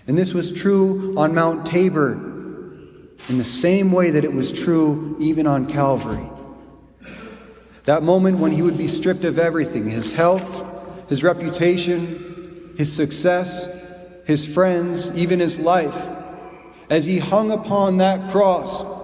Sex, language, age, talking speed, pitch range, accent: male, English, 30-49, 140 wpm, 155-190 Hz, American